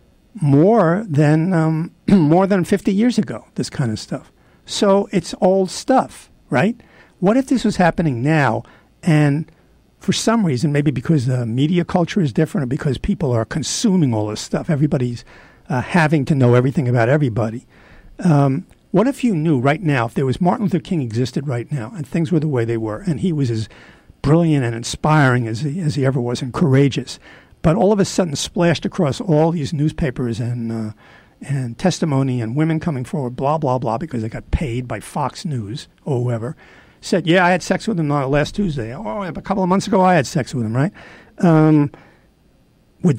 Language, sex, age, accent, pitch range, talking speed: English, male, 60-79, American, 130-175 Hz, 195 wpm